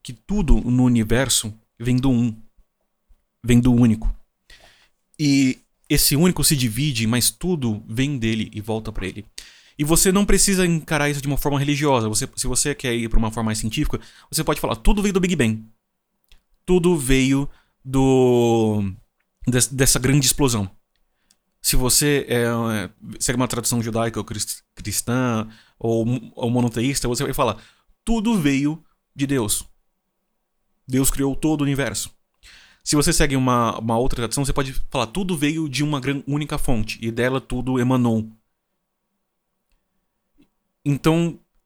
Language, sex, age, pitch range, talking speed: Portuguese, male, 30-49, 115-150 Hz, 150 wpm